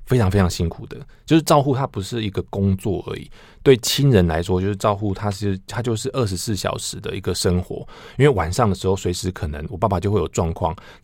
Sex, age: male, 20-39